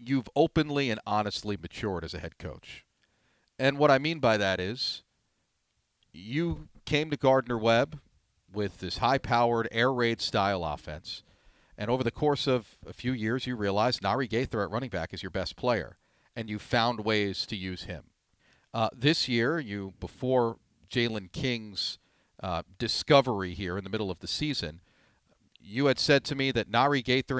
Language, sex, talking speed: English, male, 165 wpm